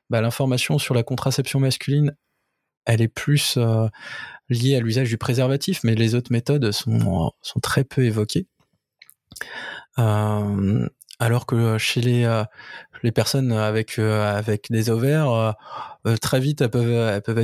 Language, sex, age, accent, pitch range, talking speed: French, male, 20-39, French, 110-135 Hz, 145 wpm